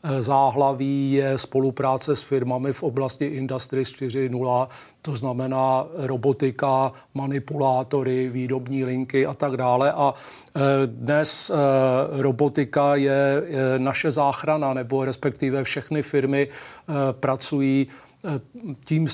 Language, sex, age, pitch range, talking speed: Czech, male, 40-59, 130-140 Hz, 95 wpm